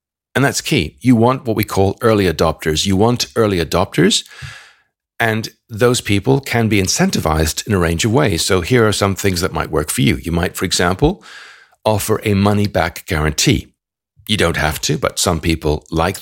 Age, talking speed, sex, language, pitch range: 50-69, 190 wpm, male, English, 85-110 Hz